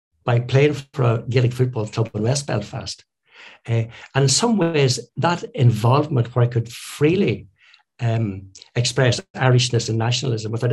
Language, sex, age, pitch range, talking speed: English, male, 60-79, 115-145 Hz, 150 wpm